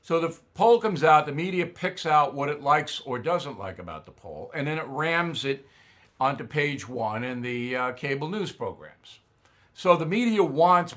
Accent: American